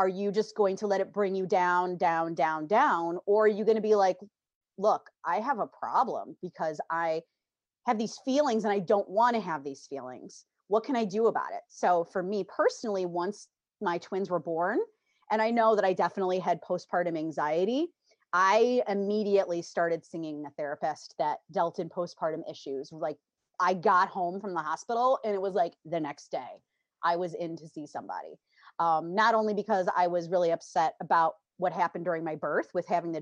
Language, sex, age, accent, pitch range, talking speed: English, female, 30-49, American, 170-220 Hz, 200 wpm